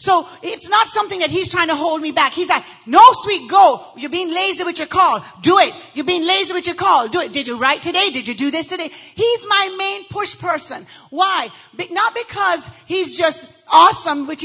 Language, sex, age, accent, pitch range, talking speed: English, female, 40-59, American, 285-365 Hz, 220 wpm